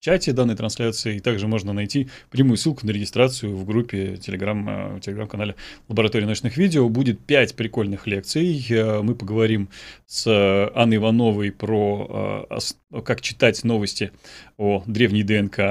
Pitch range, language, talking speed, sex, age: 105-130 Hz, Russian, 130 wpm, male, 20-39